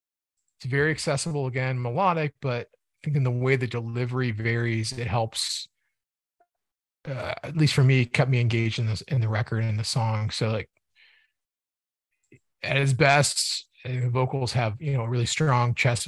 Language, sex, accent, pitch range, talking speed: English, male, American, 115-135 Hz, 175 wpm